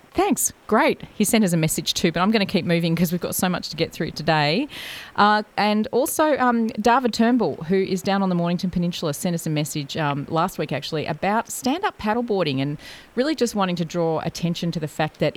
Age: 30-49